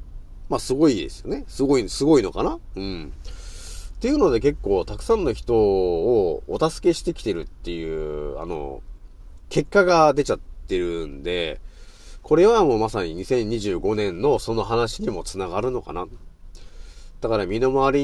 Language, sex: Japanese, male